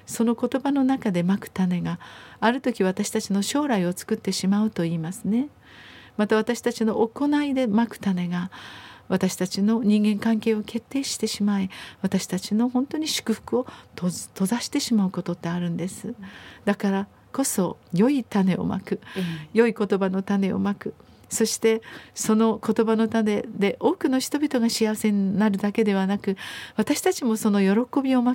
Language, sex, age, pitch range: Japanese, female, 50-69, 190-230 Hz